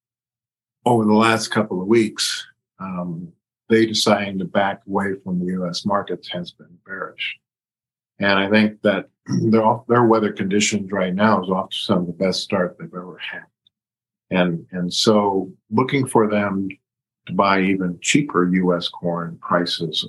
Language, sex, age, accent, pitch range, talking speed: English, male, 50-69, American, 95-120 Hz, 160 wpm